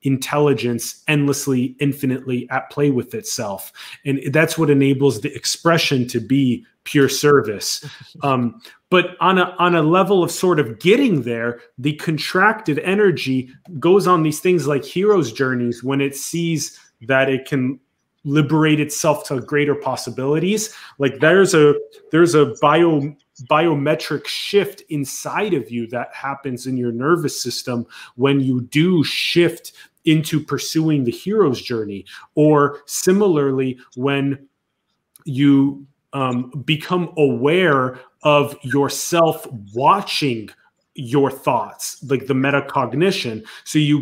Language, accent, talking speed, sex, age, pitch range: English, Canadian, 125 wpm, male, 30-49, 130-155 Hz